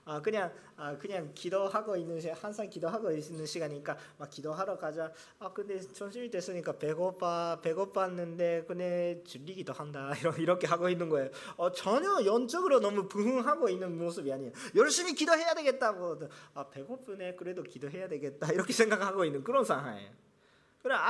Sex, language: male, Korean